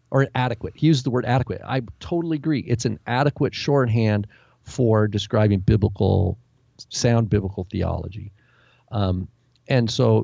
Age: 40-59